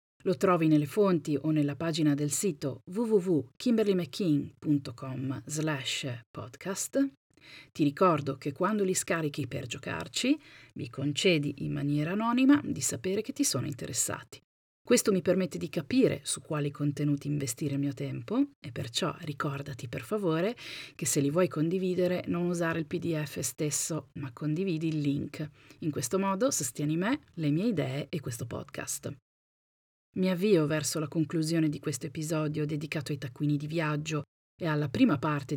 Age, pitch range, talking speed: 40-59, 145-180 Hz, 150 wpm